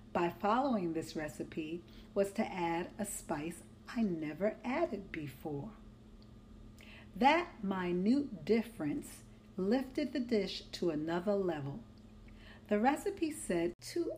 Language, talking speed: English, 110 wpm